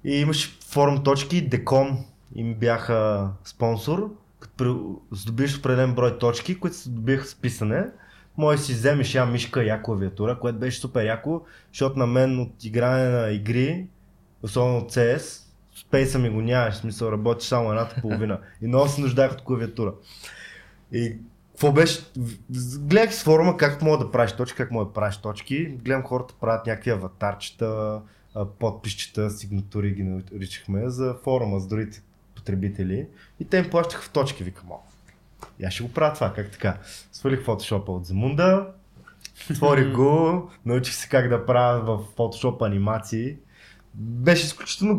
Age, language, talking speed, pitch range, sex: 20-39, Bulgarian, 155 wpm, 105-140 Hz, male